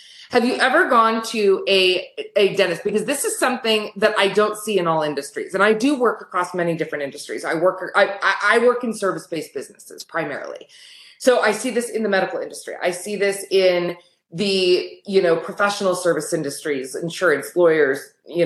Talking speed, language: 190 wpm, English